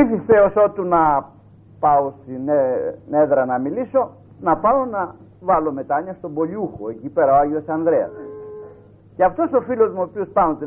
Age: 50-69